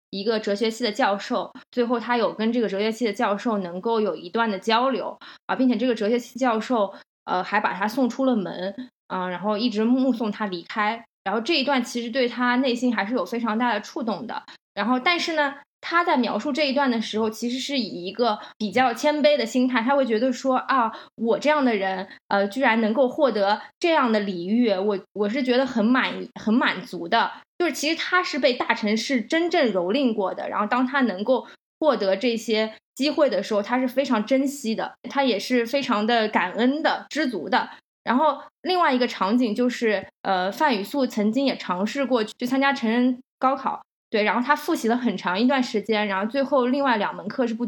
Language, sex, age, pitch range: Chinese, female, 20-39, 215-270 Hz